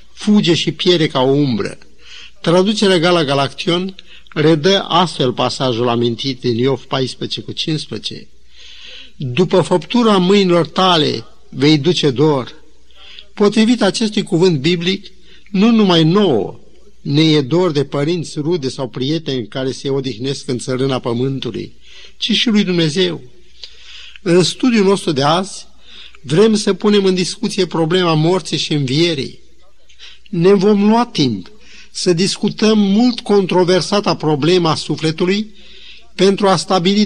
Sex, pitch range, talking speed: male, 160-205 Hz, 125 wpm